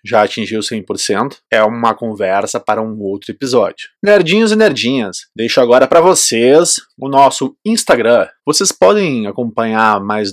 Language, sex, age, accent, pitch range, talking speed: Portuguese, male, 20-39, Brazilian, 120-185 Hz, 140 wpm